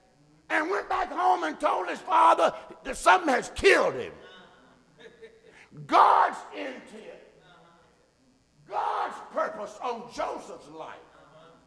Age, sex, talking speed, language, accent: 60-79, male, 105 wpm, English, American